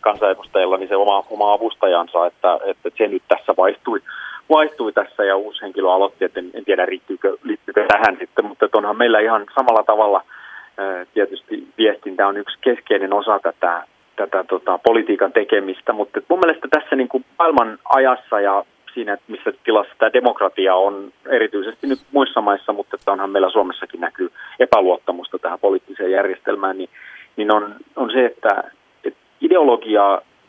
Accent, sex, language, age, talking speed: native, male, Finnish, 30-49, 165 wpm